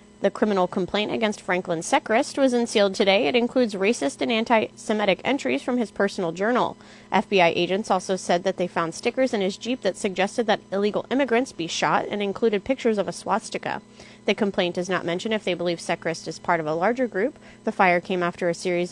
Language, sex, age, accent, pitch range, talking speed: English, female, 30-49, American, 175-225 Hz, 205 wpm